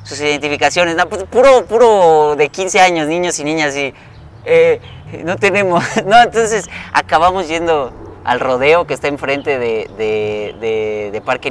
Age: 30-49